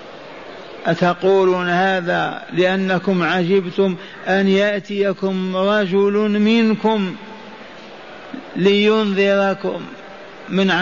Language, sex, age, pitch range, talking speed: Arabic, male, 50-69, 165-190 Hz, 55 wpm